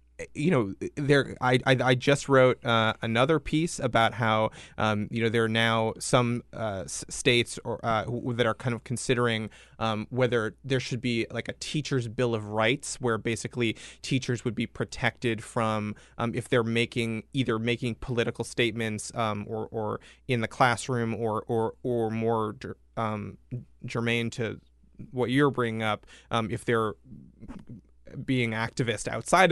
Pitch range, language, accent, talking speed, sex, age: 110-125 Hz, English, American, 165 wpm, male, 20-39